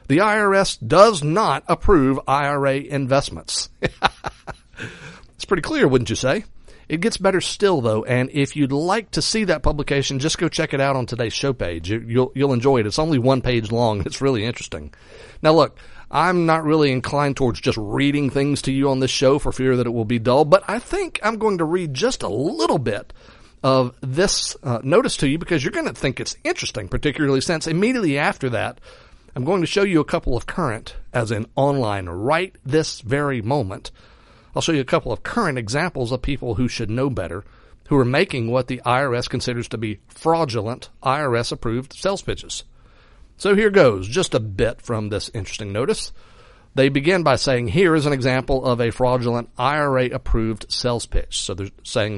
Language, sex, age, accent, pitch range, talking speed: English, male, 50-69, American, 120-155 Hz, 195 wpm